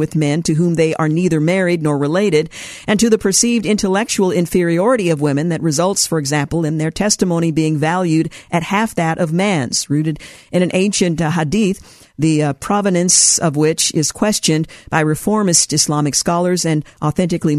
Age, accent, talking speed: 50-69, American, 175 wpm